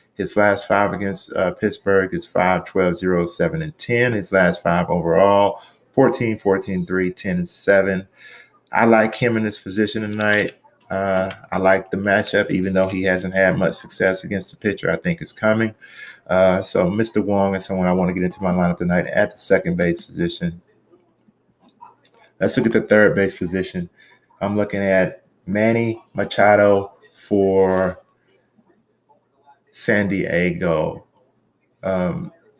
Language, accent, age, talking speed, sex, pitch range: English, American, 30-49, 155 wpm, male, 95-115 Hz